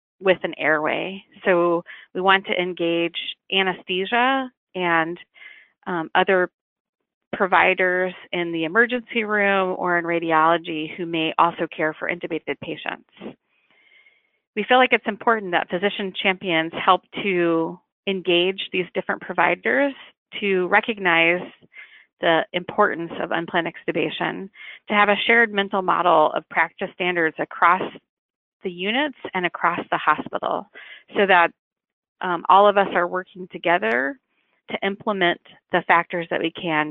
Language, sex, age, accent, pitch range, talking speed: English, female, 30-49, American, 170-205 Hz, 130 wpm